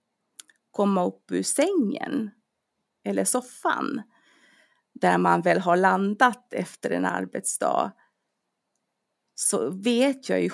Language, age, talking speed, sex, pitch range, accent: Swedish, 30-49, 100 wpm, female, 170-245 Hz, native